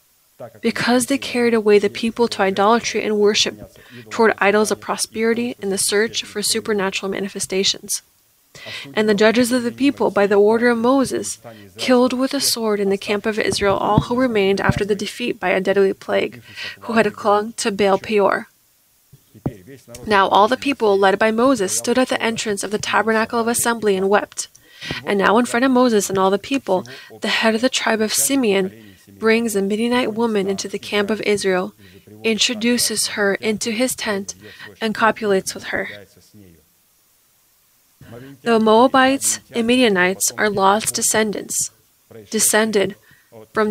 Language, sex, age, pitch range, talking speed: English, female, 20-39, 195-230 Hz, 160 wpm